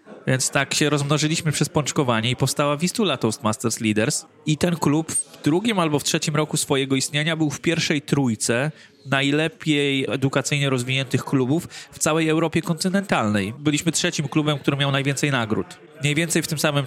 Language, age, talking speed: Polish, 20-39, 165 wpm